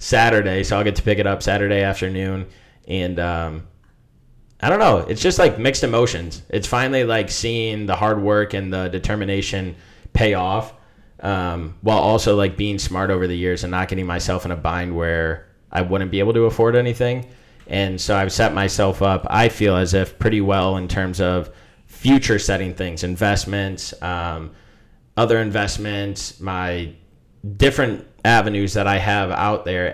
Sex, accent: male, American